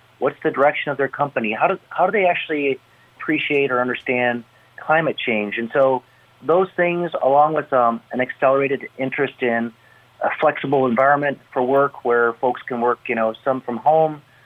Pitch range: 115-140 Hz